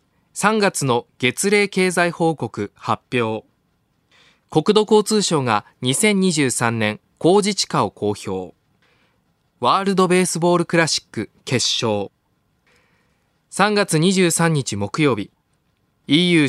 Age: 20-39